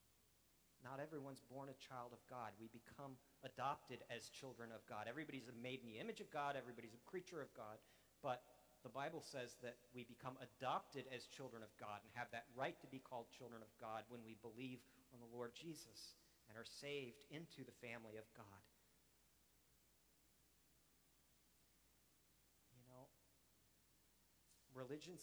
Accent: American